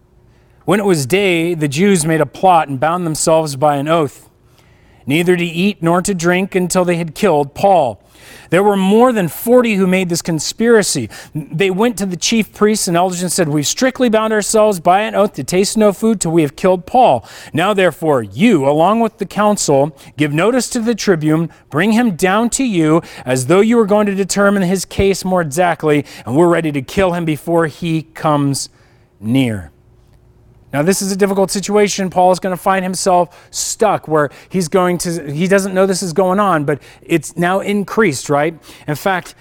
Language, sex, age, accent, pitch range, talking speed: English, male, 40-59, American, 150-200 Hz, 200 wpm